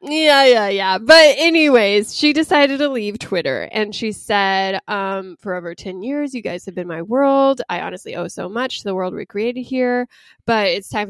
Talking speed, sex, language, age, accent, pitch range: 205 wpm, female, English, 10-29, American, 180-220 Hz